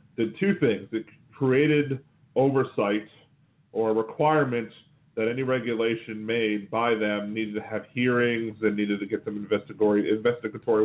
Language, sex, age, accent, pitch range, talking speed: English, male, 40-59, American, 110-140 Hz, 140 wpm